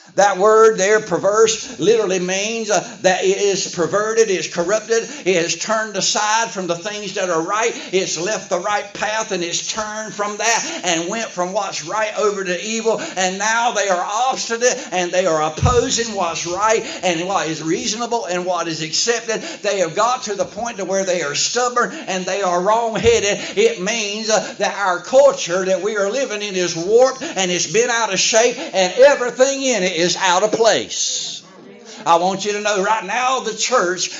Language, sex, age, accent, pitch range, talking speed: English, male, 60-79, American, 185-220 Hz, 195 wpm